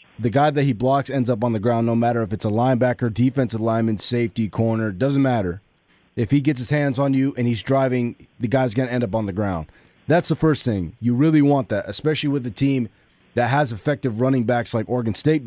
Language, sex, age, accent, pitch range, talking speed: English, male, 30-49, American, 115-135 Hz, 235 wpm